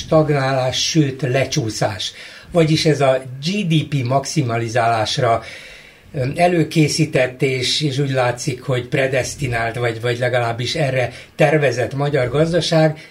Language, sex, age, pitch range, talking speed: Hungarian, male, 60-79, 120-150 Hz, 100 wpm